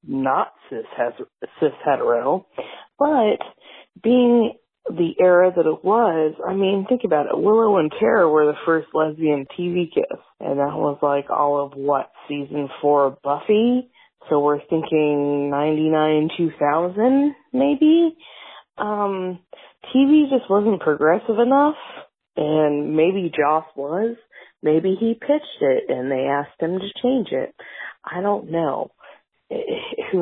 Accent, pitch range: American, 145-235 Hz